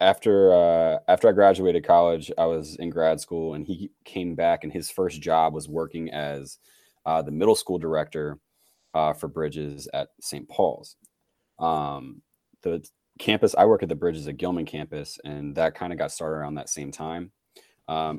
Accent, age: American, 20-39